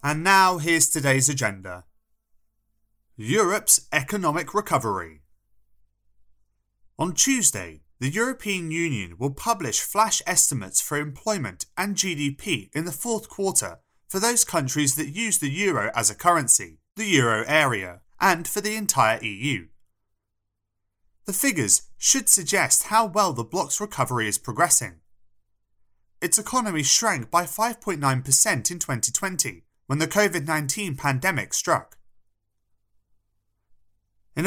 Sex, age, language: male, 30-49, English